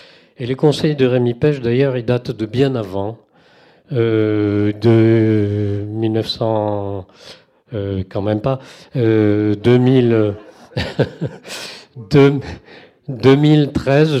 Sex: male